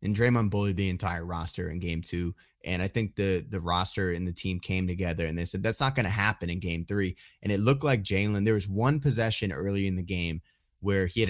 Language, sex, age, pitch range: English, male, 20-39, 95-110 Hz